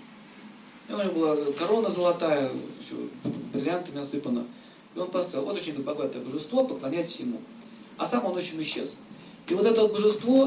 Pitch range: 155-230 Hz